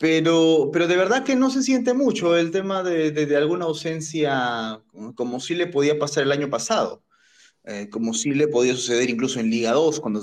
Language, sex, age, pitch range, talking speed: Spanish, male, 20-39, 120-200 Hz, 205 wpm